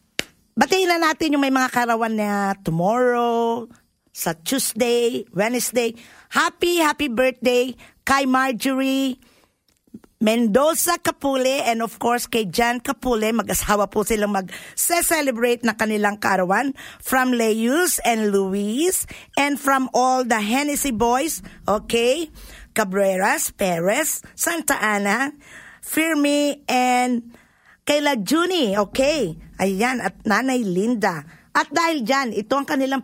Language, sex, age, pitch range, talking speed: Filipino, female, 50-69, 205-270 Hz, 110 wpm